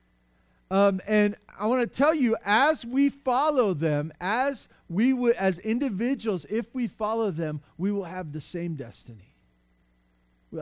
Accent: American